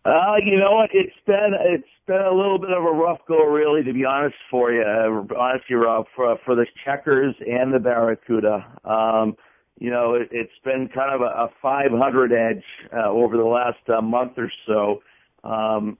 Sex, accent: male, American